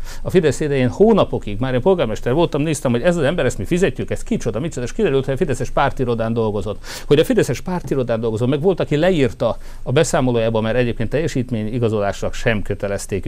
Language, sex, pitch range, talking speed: Hungarian, male, 110-140 Hz, 195 wpm